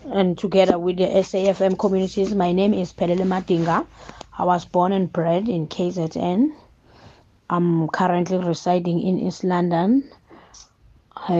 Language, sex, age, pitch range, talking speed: English, female, 20-39, 170-195 Hz, 130 wpm